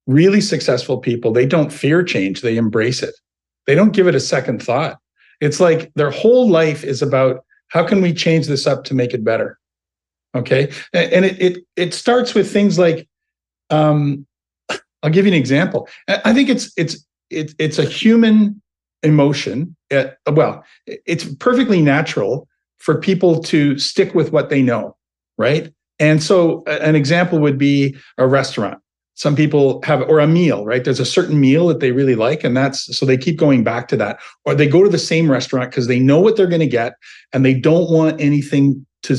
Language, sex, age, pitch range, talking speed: English, male, 50-69, 135-175 Hz, 190 wpm